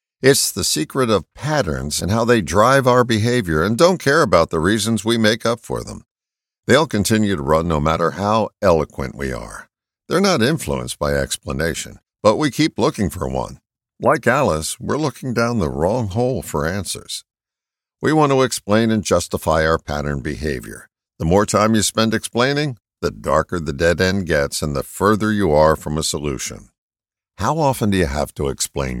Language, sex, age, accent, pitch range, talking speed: English, male, 60-79, American, 80-125 Hz, 185 wpm